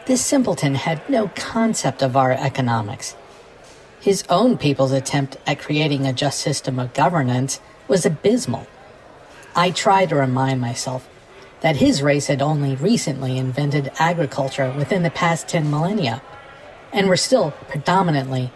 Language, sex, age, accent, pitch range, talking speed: English, female, 50-69, American, 135-175 Hz, 140 wpm